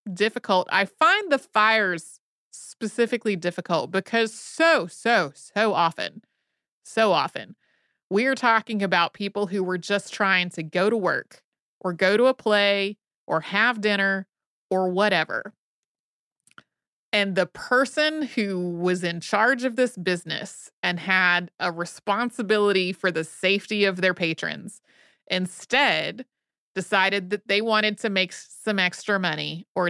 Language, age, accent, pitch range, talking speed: English, 30-49, American, 170-210 Hz, 135 wpm